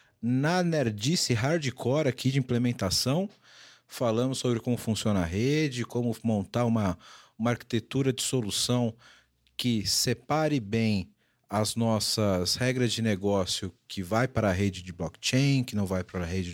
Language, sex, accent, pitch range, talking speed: Portuguese, male, Brazilian, 105-130 Hz, 145 wpm